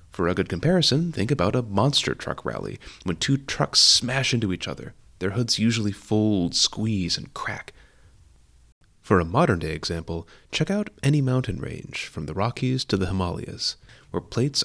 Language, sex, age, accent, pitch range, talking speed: English, male, 30-49, American, 85-125 Hz, 170 wpm